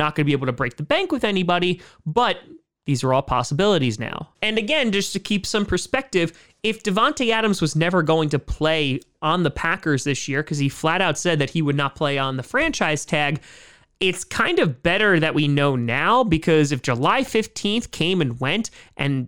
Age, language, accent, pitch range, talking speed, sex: 30-49, English, American, 150-210 Hz, 210 wpm, male